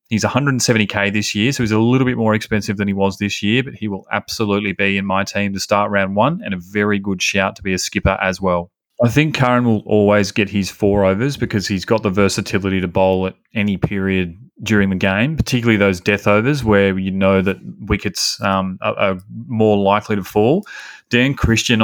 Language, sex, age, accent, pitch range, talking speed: English, male, 30-49, Australian, 95-110 Hz, 215 wpm